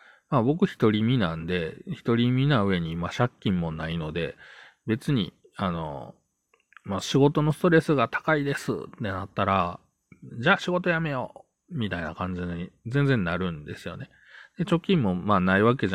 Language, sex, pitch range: Japanese, male, 90-135 Hz